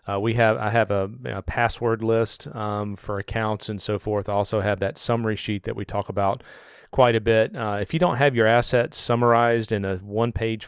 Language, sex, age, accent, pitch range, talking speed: English, male, 40-59, American, 105-120 Hz, 220 wpm